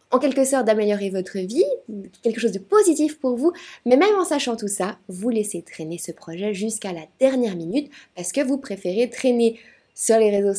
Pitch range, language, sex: 190-270 Hz, French, female